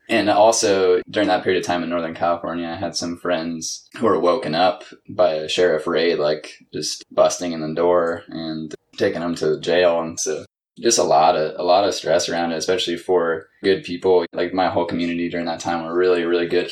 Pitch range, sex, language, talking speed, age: 85-90 Hz, male, English, 215 wpm, 20-39